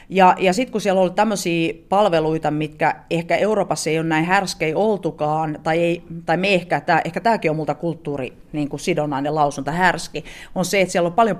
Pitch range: 150-180 Hz